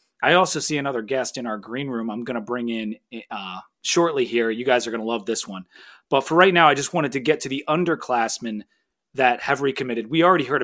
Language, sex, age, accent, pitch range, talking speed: English, male, 30-49, American, 120-175 Hz, 245 wpm